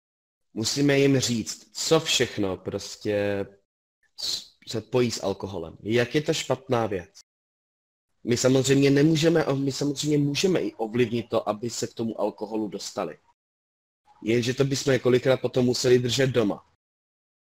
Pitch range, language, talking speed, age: 110-135 Hz, Czech, 130 wpm, 20-39